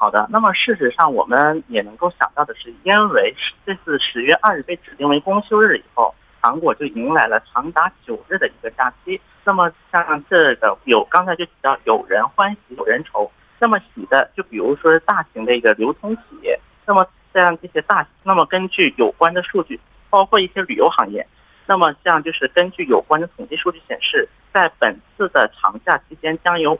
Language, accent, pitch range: Korean, Chinese, 160-210 Hz